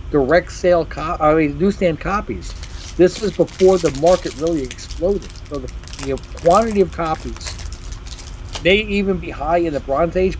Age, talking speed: 40-59, 150 wpm